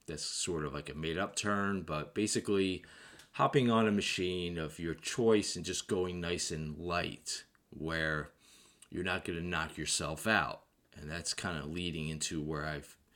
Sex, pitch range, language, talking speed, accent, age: male, 80-95 Hz, English, 180 wpm, American, 20-39